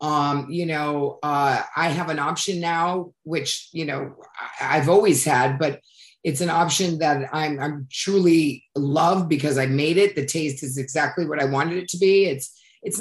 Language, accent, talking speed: English, American, 185 wpm